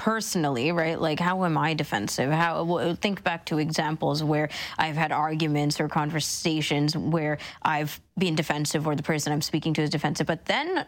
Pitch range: 155-185 Hz